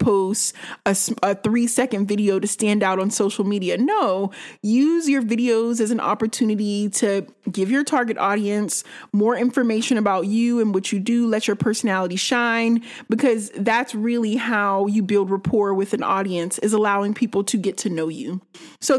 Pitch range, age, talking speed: 210-245 Hz, 30-49, 175 wpm